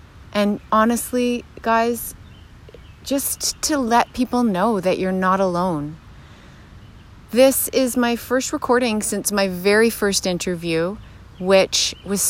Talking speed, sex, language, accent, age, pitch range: 115 wpm, female, English, American, 30-49, 170-205 Hz